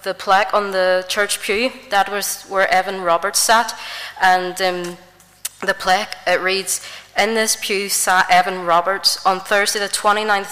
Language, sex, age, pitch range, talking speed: English, female, 20-39, 180-200 Hz, 160 wpm